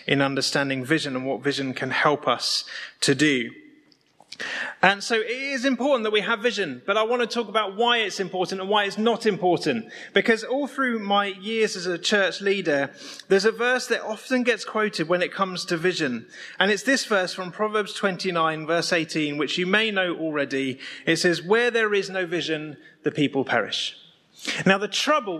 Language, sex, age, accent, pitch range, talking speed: English, male, 30-49, British, 175-230 Hz, 195 wpm